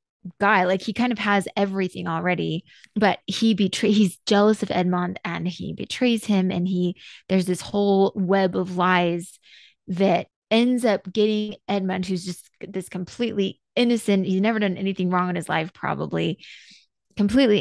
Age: 20-39